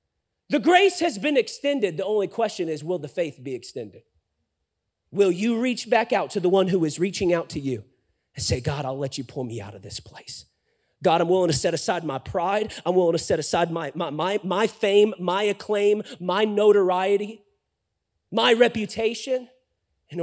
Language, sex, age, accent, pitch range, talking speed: English, male, 30-49, American, 150-210 Hz, 185 wpm